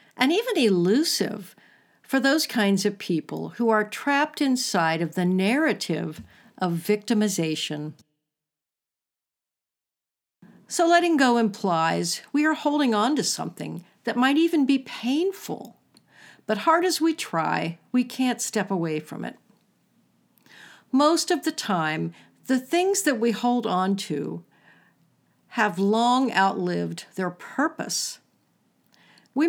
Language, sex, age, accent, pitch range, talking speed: English, female, 50-69, American, 175-265 Hz, 120 wpm